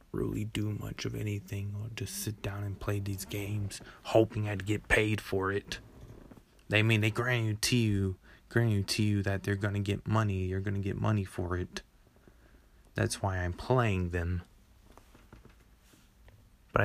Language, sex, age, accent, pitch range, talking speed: English, male, 20-39, American, 85-100 Hz, 170 wpm